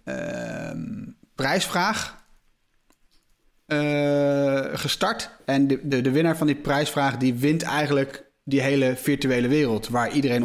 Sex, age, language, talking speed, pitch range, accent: male, 30-49, Dutch, 120 wpm, 135-170 Hz, Dutch